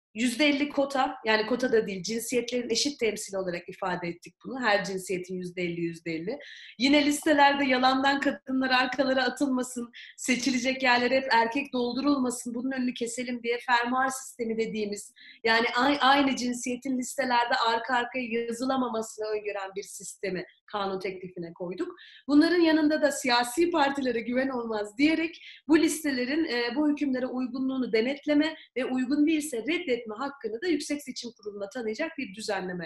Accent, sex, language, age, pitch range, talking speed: native, female, Turkish, 30-49, 220-280 Hz, 135 wpm